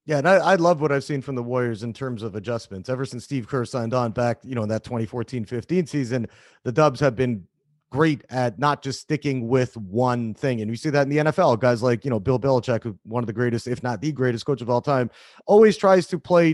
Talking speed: 255 wpm